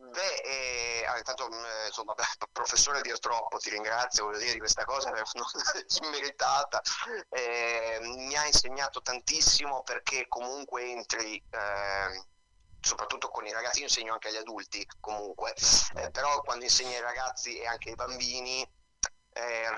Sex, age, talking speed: male, 30-49, 135 wpm